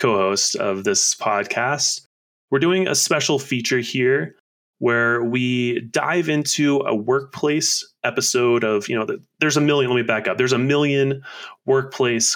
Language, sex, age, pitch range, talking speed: English, male, 20-39, 100-135 Hz, 150 wpm